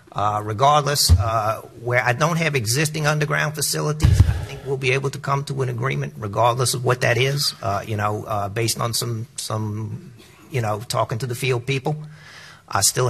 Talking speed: 190 wpm